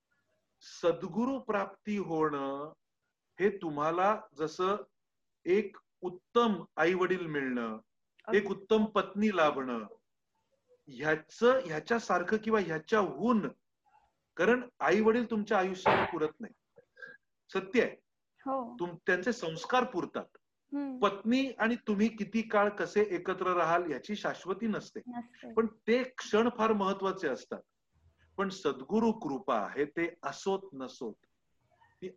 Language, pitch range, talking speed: Marathi, 165-220 Hz, 110 wpm